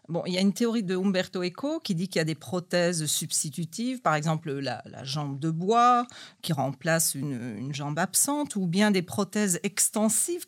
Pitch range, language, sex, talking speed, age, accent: 165-220 Hz, French, female, 200 wpm, 40-59, French